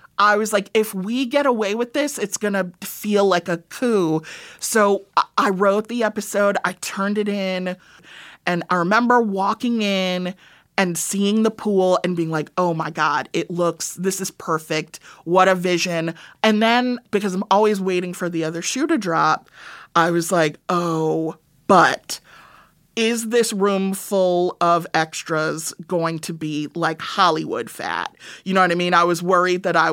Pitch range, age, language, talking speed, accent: 175-220 Hz, 30-49, English, 175 wpm, American